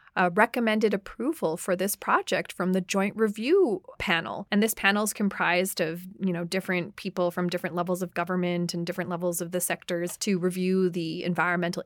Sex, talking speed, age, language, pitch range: female, 180 wpm, 30-49, English, 180-225 Hz